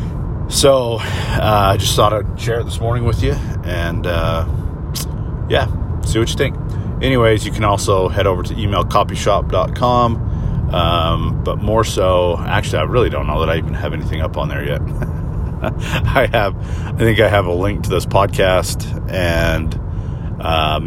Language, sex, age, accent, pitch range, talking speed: English, male, 40-59, American, 85-105 Hz, 165 wpm